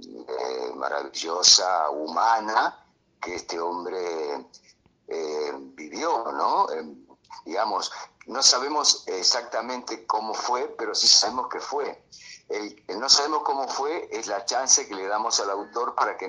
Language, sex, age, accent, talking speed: Spanish, male, 50-69, Argentinian, 135 wpm